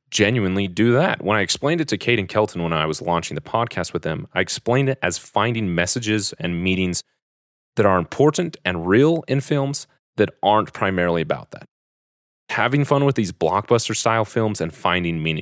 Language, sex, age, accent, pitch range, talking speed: English, male, 30-49, American, 90-115 Hz, 190 wpm